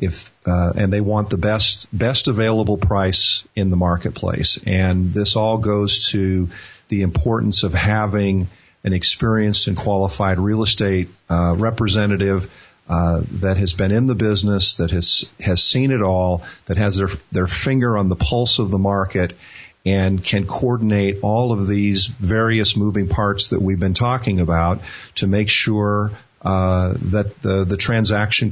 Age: 40-59